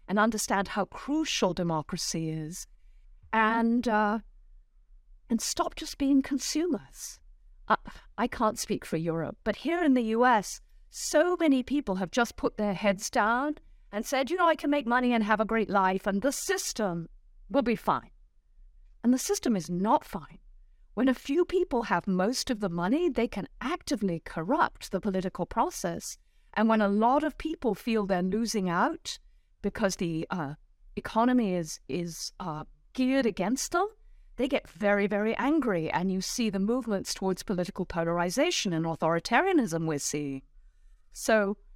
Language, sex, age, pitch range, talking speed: English, female, 50-69, 180-255 Hz, 160 wpm